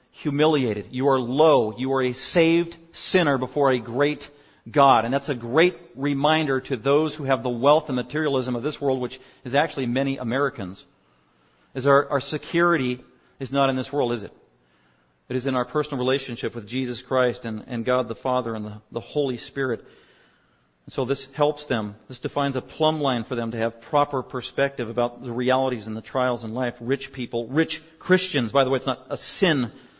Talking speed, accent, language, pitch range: 200 wpm, American, English, 115-140 Hz